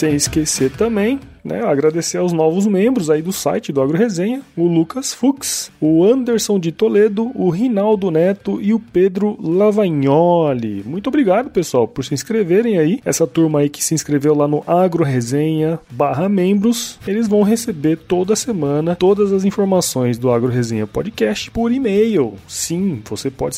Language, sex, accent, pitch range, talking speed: Portuguese, male, Brazilian, 145-210 Hz, 160 wpm